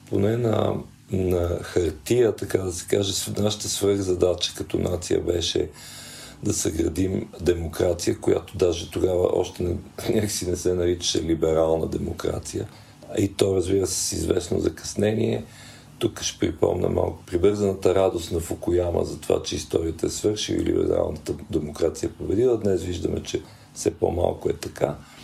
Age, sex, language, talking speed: 50-69, male, Bulgarian, 145 wpm